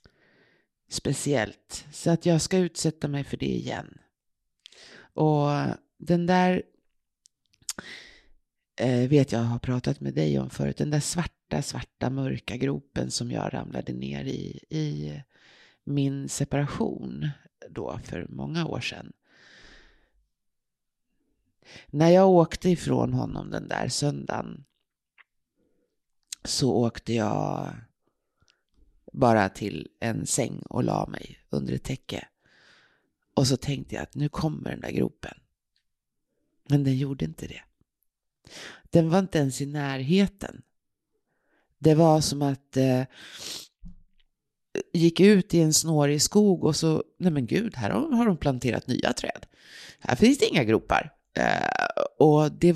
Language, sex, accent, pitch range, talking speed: English, female, Swedish, 120-165 Hz, 125 wpm